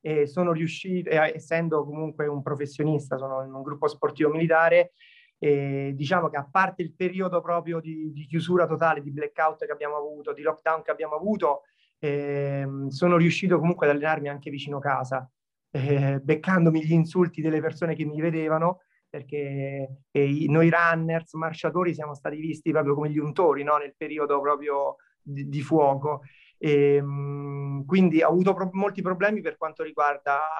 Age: 30-49